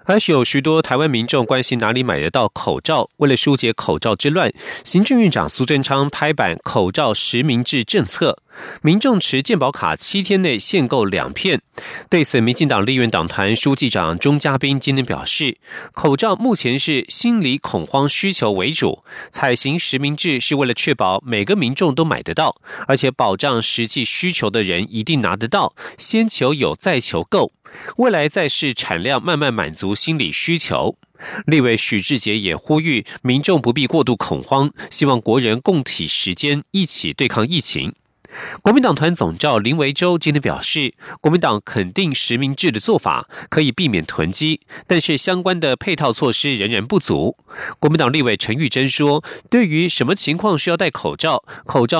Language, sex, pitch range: German, male, 125-160 Hz